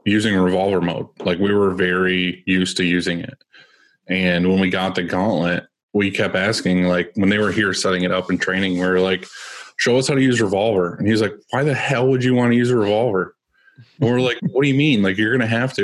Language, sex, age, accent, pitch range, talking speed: English, male, 20-39, American, 90-115 Hz, 250 wpm